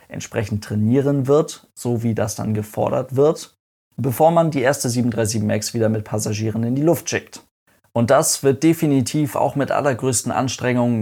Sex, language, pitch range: male, German, 110-135 Hz